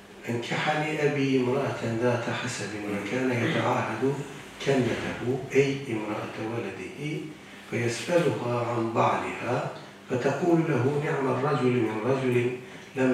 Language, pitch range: Turkish, 110-135 Hz